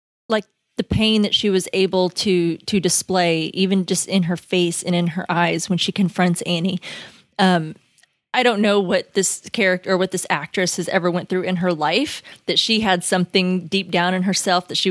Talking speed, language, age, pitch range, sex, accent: 200 wpm, English, 20-39, 165-190 Hz, female, American